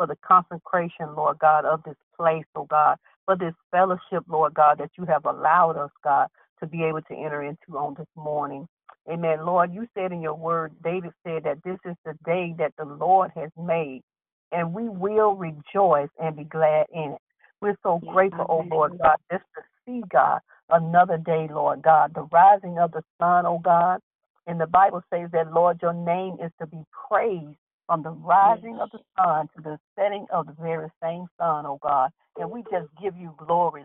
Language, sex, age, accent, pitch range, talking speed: English, female, 50-69, American, 160-190 Hz, 200 wpm